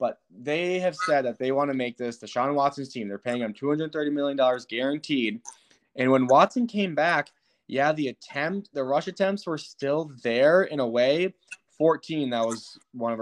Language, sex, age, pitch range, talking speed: English, male, 20-39, 120-145 Hz, 190 wpm